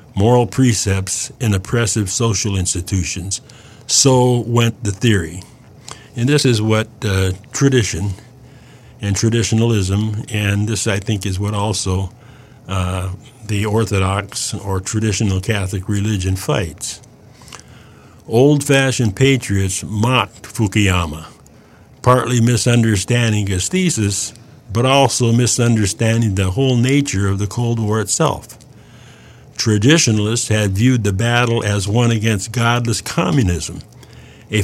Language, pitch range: English, 105-130 Hz